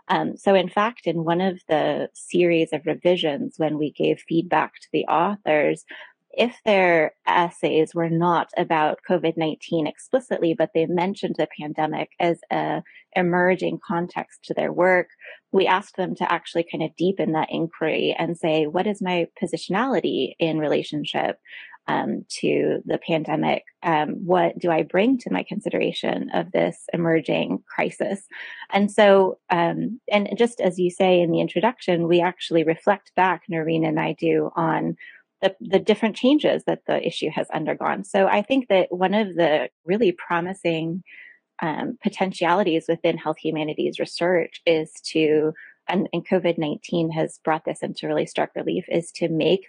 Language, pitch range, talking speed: English, 165-190 Hz, 160 wpm